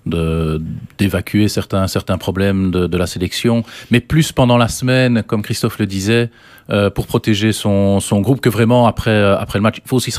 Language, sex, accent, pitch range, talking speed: French, male, French, 90-120 Hz, 200 wpm